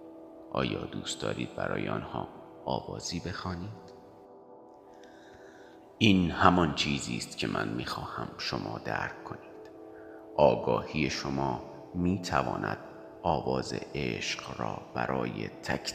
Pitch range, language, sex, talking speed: 70-95 Hz, Persian, male, 95 wpm